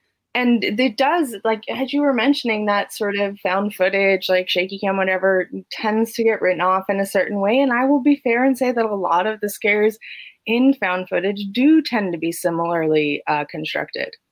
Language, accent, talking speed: English, American, 205 wpm